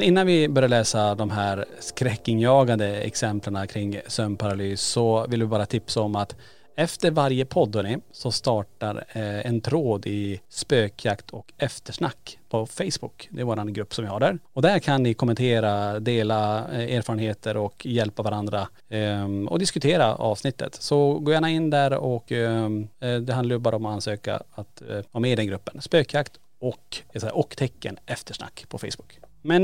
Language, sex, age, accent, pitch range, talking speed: Swedish, male, 30-49, Norwegian, 105-135 Hz, 155 wpm